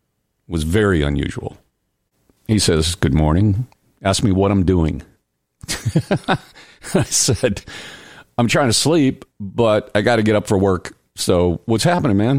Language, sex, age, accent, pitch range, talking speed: English, male, 50-69, American, 80-130 Hz, 145 wpm